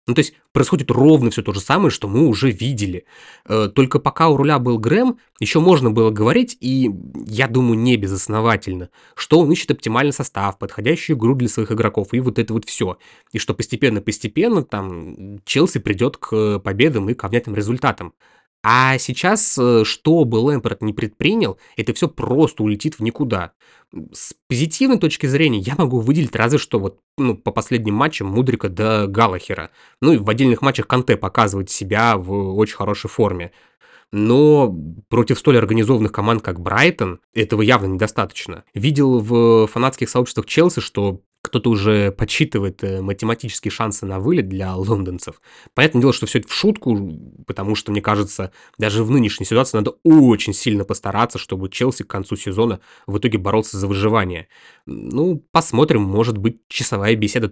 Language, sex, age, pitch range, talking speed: Russian, male, 20-39, 105-130 Hz, 165 wpm